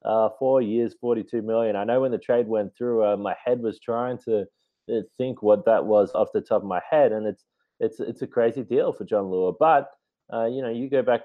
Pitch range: 105-145 Hz